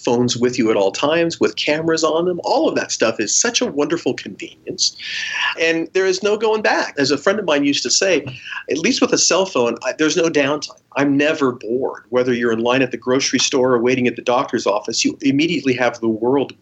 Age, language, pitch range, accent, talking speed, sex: 40-59, English, 125-170 Hz, American, 230 wpm, male